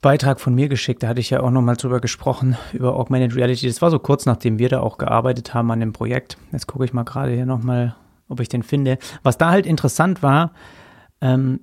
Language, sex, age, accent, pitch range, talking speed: German, male, 30-49, German, 125-145 Hz, 230 wpm